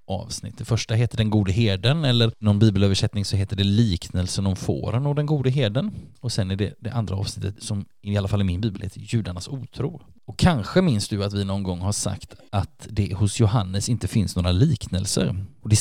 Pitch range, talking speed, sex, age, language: 100-125 Hz, 215 wpm, male, 20-39, Swedish